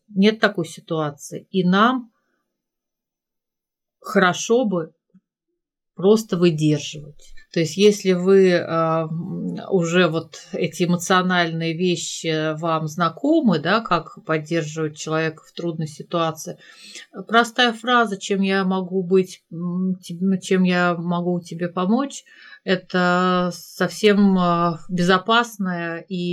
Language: Russian